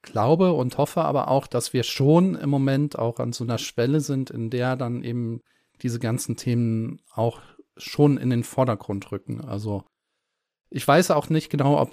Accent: German